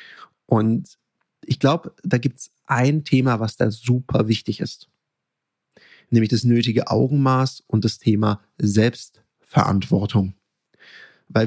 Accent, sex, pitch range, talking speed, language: German, male, 105-130 Hz, 115 wpm, German